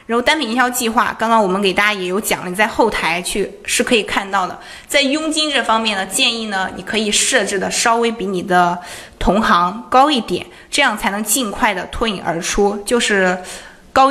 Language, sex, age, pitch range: Chinese, female, 20-39, 190-245 Hz